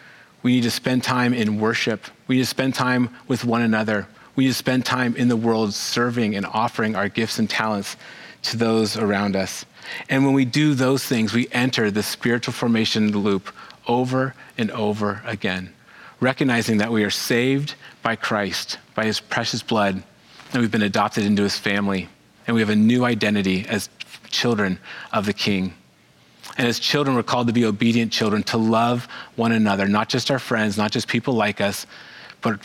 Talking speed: 185 wpm